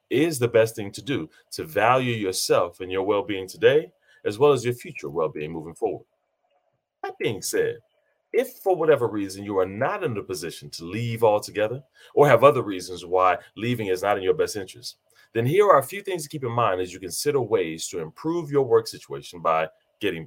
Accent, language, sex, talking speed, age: American, English, male, 205 wpm, 30-49